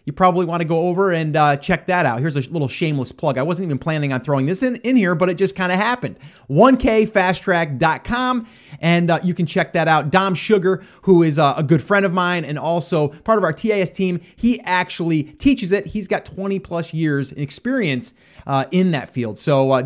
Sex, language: male, English